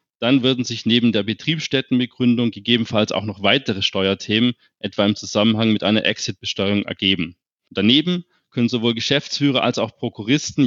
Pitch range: 110-135 Hz